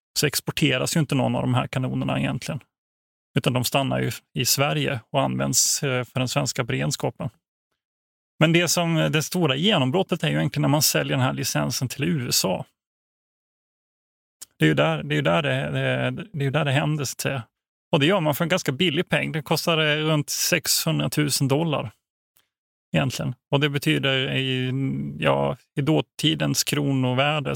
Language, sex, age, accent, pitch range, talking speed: Swedish, male, 30-49, native, 130-150 Hz, 160 wpm